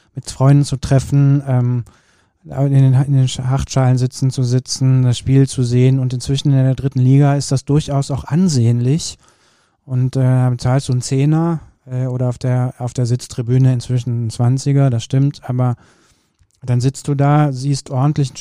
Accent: German